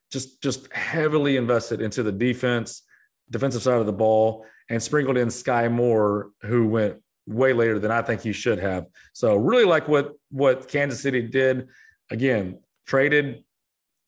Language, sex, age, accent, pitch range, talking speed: English, male, 30-49, American, 110-135 Hz, 160 wpm